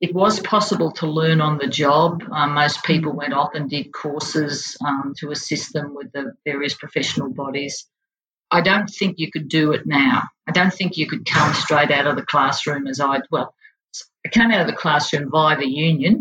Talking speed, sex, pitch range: 205 wpm, female, 140-165 Hz